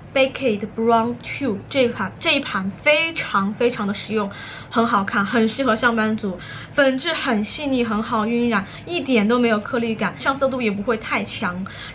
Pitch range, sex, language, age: 215-255 Hz, female, Chinese, 20-39